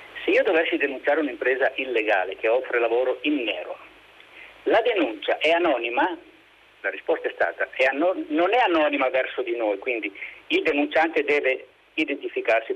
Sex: male